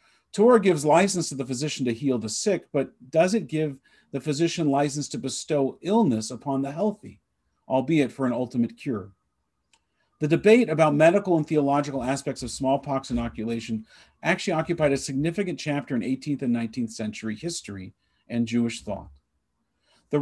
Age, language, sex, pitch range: 40-59, English, male, 115-160 Hz